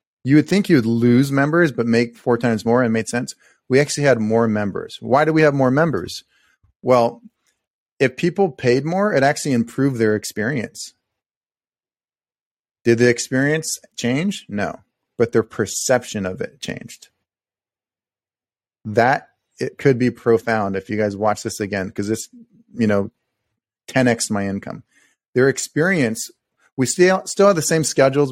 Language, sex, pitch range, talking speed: English, male, 115-140 Hz, 160 wpm